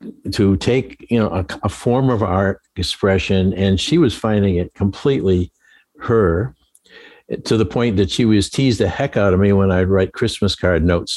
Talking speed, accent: 190 wpm, American